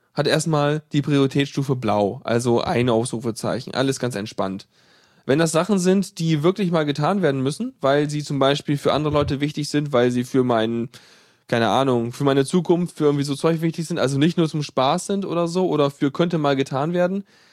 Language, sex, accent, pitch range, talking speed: German, male, German, 140-180 Hz, 200 wpm